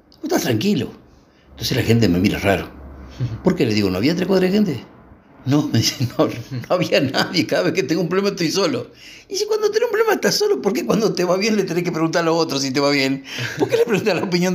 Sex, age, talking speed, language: male, 50-69, 270 wpm, Spanish